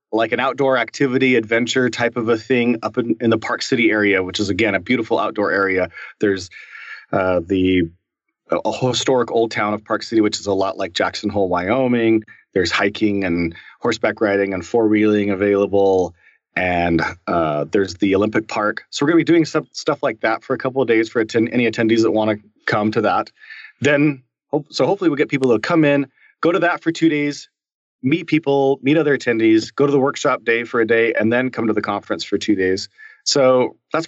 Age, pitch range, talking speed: 30-49, 100-135 Hz, 205 wpm